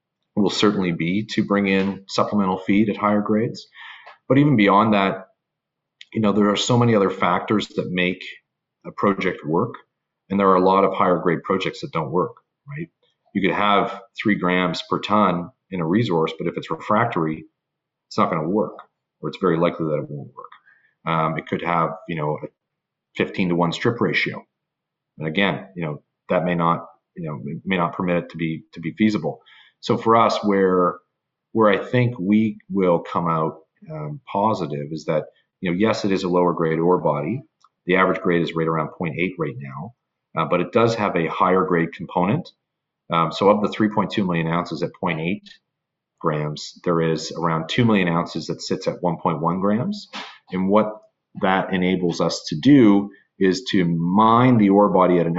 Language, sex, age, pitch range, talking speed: English, male, 40-59, 85-105 Hz, 195 wpm